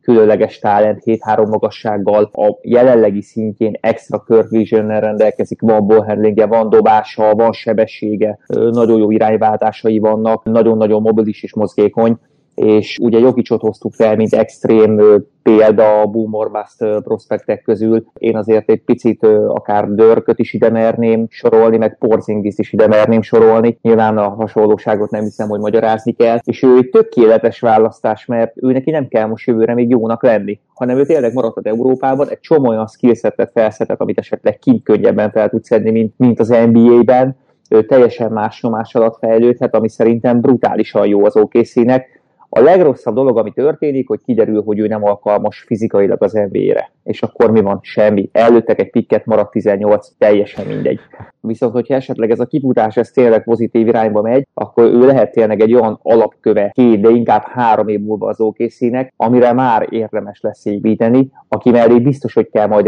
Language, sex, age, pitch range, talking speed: Hungarian, male, 30-49, 105-115 Hz, 165 wpm